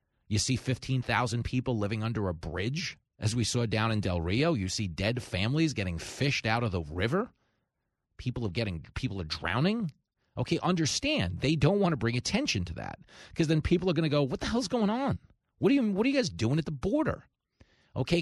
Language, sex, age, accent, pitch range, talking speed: English, male, 40-59, American, 105-155 Hz, 215 wpm